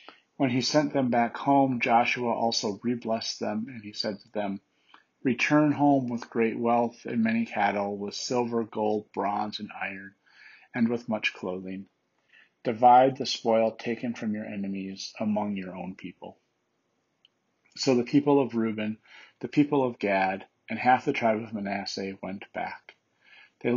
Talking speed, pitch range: 155 wpm, 105-130 Hz